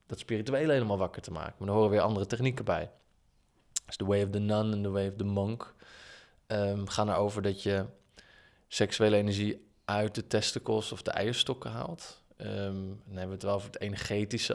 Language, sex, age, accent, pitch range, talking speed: Dutch, male, 20-39, Dutch, 100-110 Hz, 200 wpm